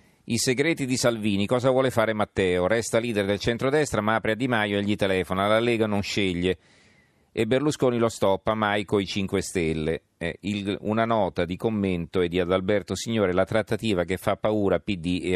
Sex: male